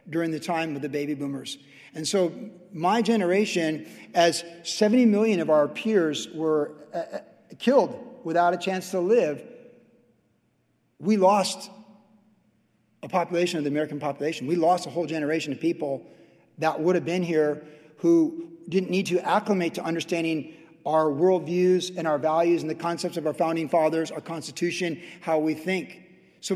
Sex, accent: male, American